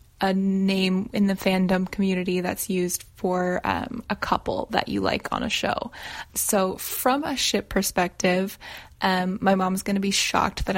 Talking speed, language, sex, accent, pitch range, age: 175 wpm, English, female, American, 195-240 Hz, 10-29